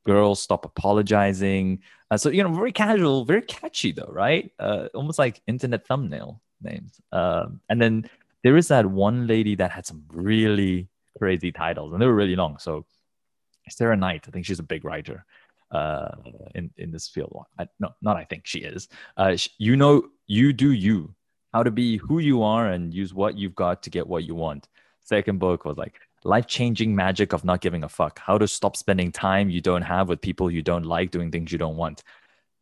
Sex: male